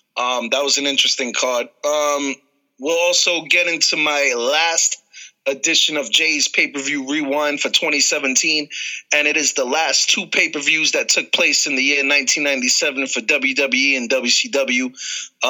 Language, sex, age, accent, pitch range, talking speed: English, male, 30-49, American, 140-165 Hz, 140 wpm